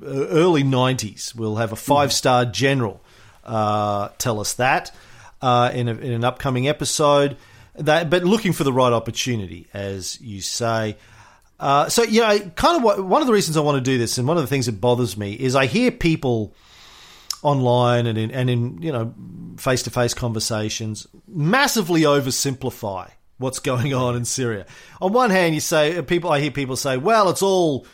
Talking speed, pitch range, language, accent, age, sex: 175 wpm, 115-150 Hz, English, Australian, 40-59, male